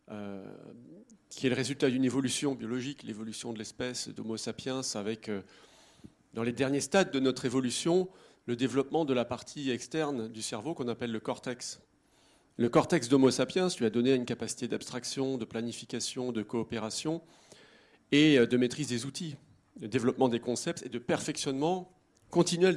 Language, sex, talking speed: French, male, 165 wpm